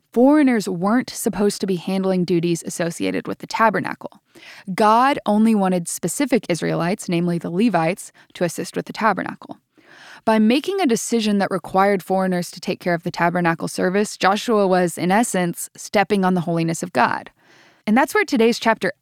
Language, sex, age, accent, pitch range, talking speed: English, female, 10-29, American, 180-235 Hz, 165 wpm